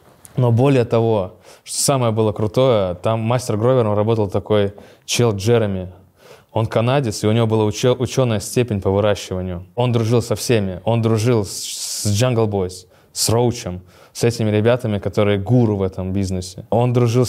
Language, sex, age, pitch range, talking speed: Russian, male, 20-39, 100-120 Hz, 155 wpm